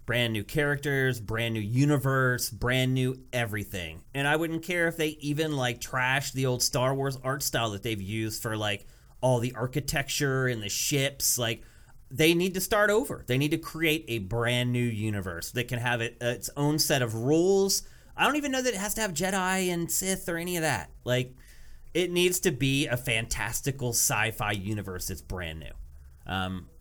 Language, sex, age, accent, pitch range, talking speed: English, male, 30-49, American, 115-155 Hz, 195 wpm